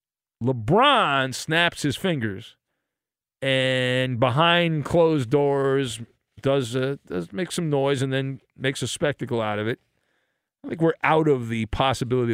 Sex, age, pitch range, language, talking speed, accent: male, 40-59, 120-180 Hz, English, 140 wpm, American